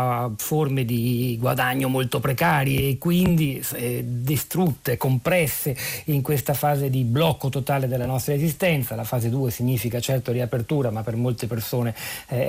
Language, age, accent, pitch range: Italian, 40-59, native, 115-140 Hz